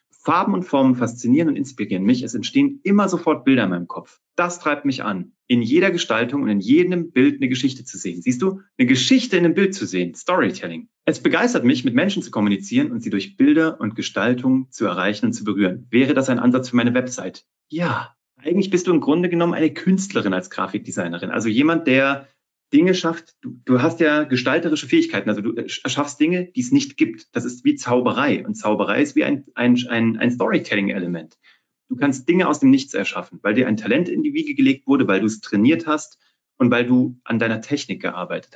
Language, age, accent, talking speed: German, 40-59, German, 210 wpm